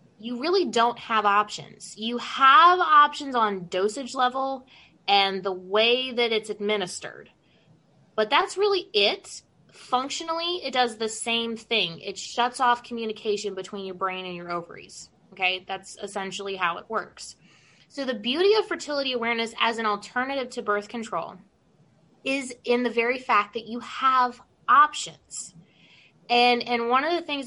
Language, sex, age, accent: English, female, 20-39, American